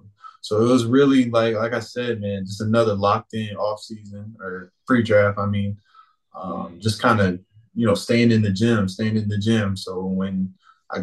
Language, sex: English, male